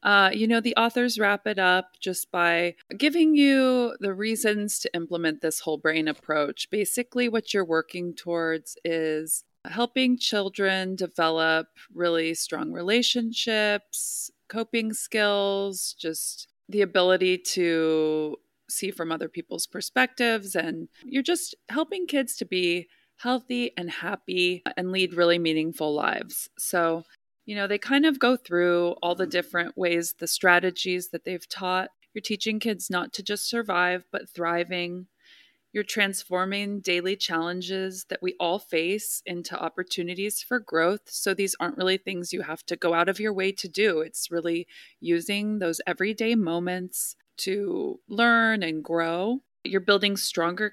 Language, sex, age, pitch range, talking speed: English, female, 20-39, 175-215 Hz, 145 wpm